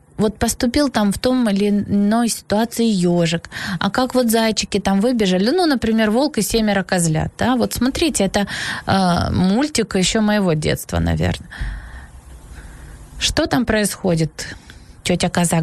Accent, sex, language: native, female, Ukrainian